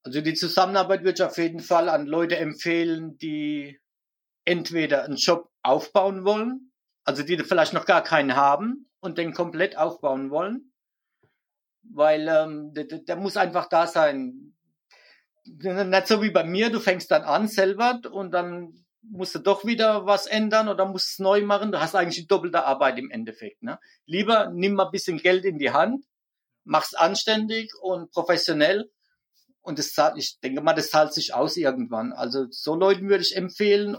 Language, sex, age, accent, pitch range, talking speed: German, male, 50-69, German, 160-205 Hz, 170 wpm